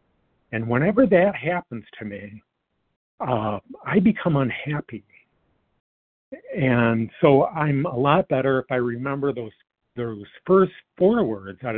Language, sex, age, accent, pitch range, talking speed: English, male, 50-69, American, 115-150 Hz, 125 wpm